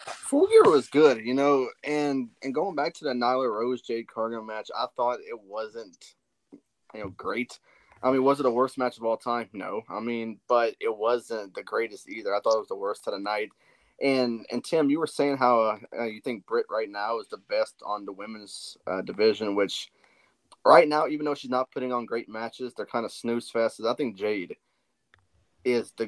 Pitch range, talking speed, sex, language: 110-145 Hz, 215 wpm, male, English